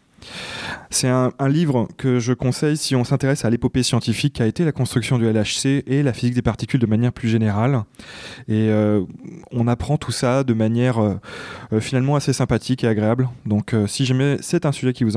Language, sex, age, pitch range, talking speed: French, male, 20-39, 110-135 Hz, 205 wpm